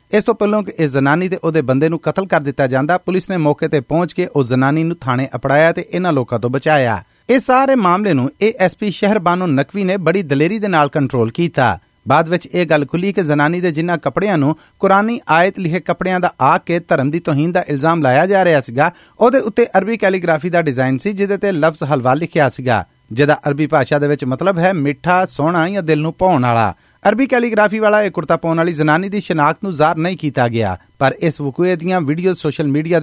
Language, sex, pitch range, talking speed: Punjabi, male, 145-195 Hz, 130 wpm